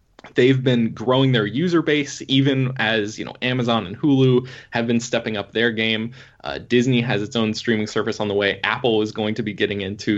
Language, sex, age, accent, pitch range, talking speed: English, male, 20-39, American, 100-120 Hz, 210 wpm